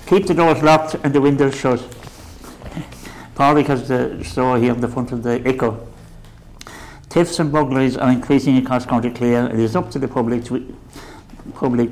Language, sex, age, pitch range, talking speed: English, male, 60-79, 115-130 Hz, 180 wpm